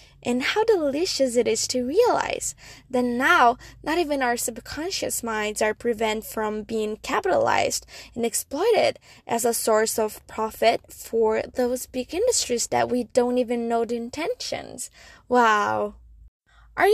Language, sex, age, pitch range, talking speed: English, female, 10-29, 225-275 Hz, 140 wpm